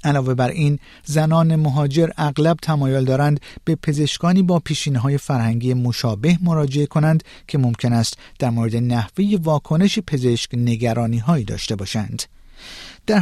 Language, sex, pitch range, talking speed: Persian, male, 120-165 Hz, 125 wpm